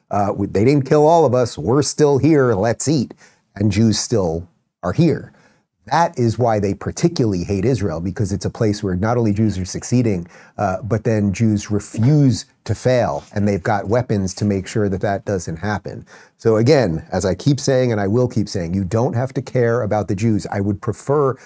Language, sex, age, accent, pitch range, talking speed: English, male, 30-49, American, 105-125 Hz, 205 wpm